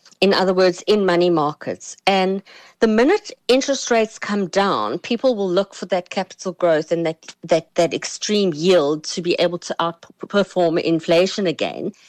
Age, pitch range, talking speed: 50-69, 180-245 Hz, 165 wpm